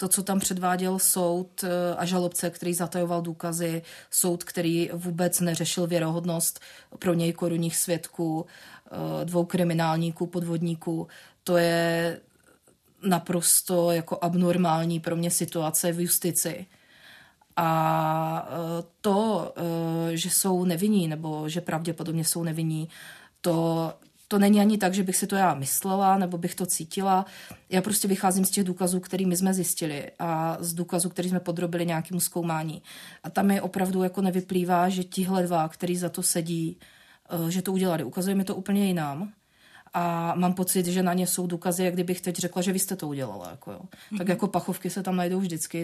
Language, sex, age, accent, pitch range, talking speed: Czech, female, 30-49, native, 165-185 Hz, 155 wpm